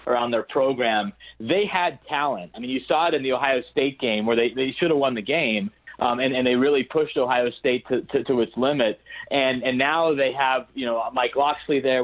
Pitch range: 120-140 Hz